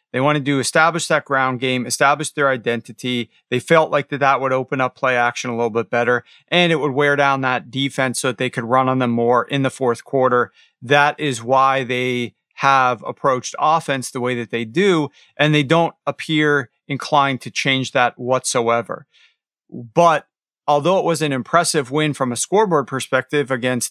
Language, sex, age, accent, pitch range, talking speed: English, male, 40-59, American, 125-150 Hz, 190 wpm